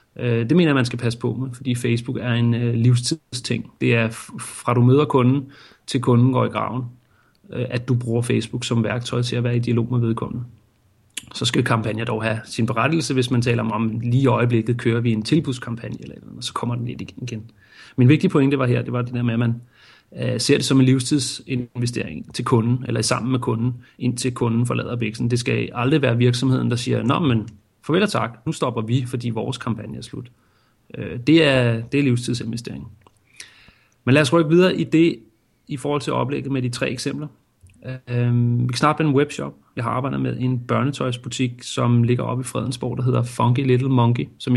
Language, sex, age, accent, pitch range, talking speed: Danish, male, 30-49, native, 120-130 Hz, 205 wpm